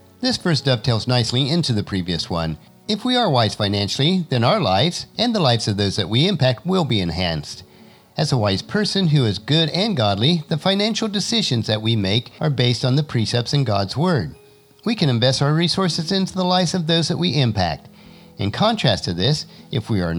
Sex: male